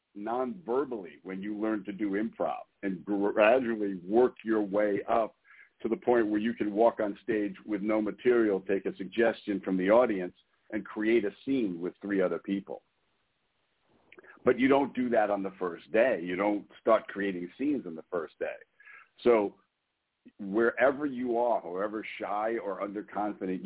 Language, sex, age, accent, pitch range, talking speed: English, male, 60-79, American, 100-115 Hz, 165 wpm